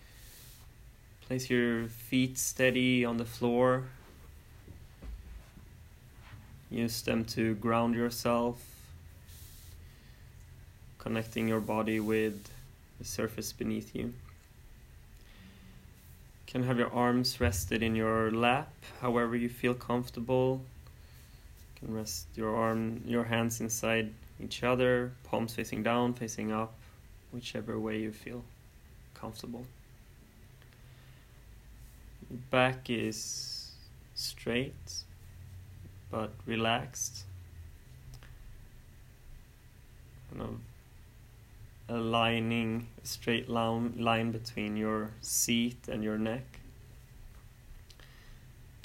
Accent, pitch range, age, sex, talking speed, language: Swedish, 110-120 Hz, 20-39, male, 85 wpm, English